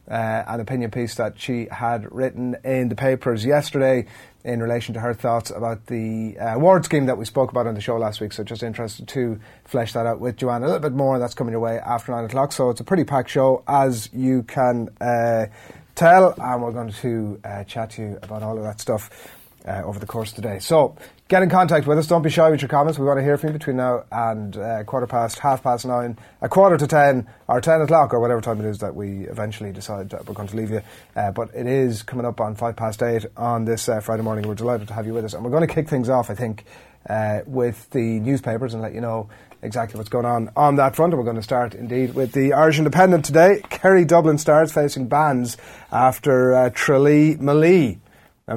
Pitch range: 115-135 Hz